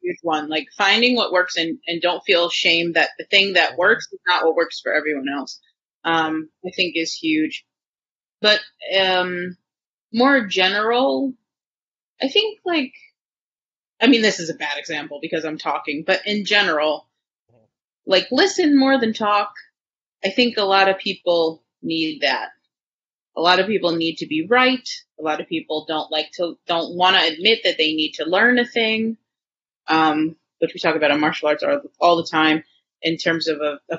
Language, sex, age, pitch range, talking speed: English, female, 30-49, 165-255 Hz, 180 wpm